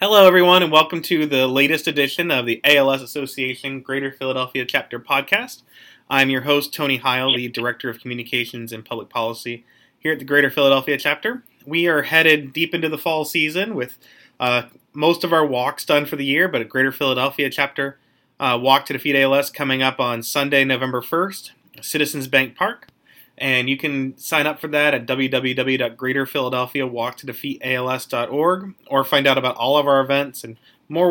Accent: American